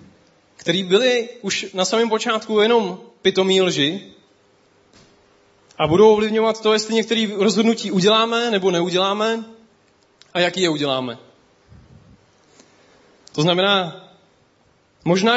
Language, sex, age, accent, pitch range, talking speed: Czech, male, 30-49, native, 160-215 Hz, 100 wpm